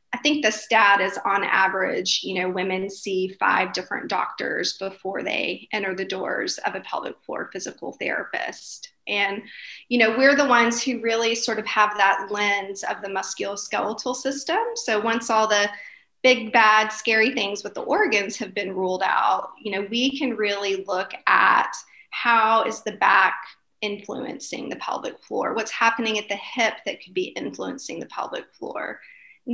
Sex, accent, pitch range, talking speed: female, American, 200-235 Hz, 175 wpm